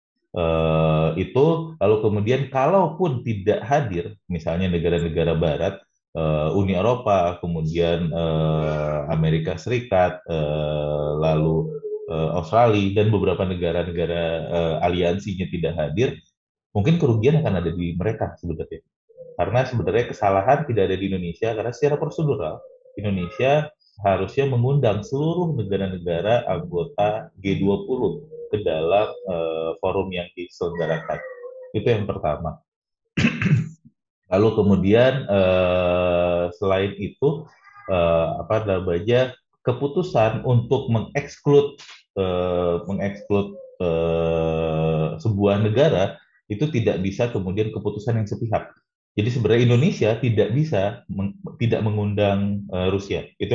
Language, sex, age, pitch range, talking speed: Indonesian, male, 30-49, 85-125 Hz, 110 wpm